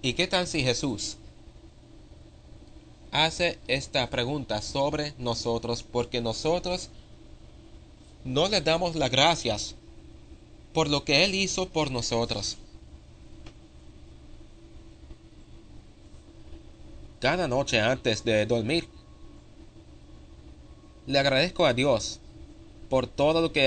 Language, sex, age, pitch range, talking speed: Spanish, male, 30-49, 100-135 Hz, 95 wpm